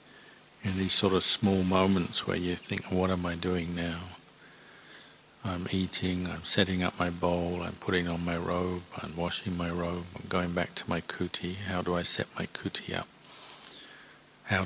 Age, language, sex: 50-69, English, male